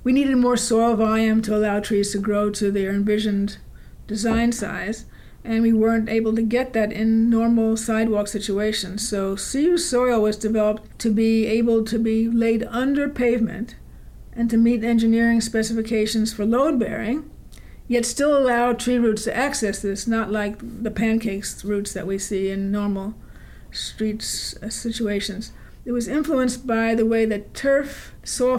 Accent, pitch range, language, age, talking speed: American, 210-235 Hz, English, 50-69, 155 wpm